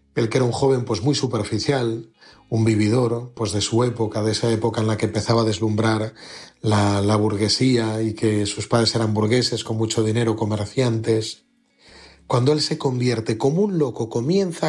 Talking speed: 180 wpm